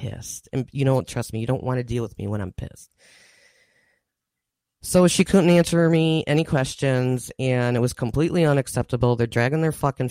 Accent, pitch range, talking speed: American, 120-160 Hz, 190 wpm